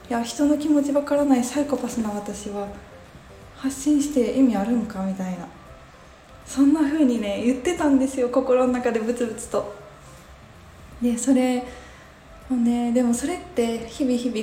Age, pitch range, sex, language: 20-39, 205-260 Hz, female, Japanese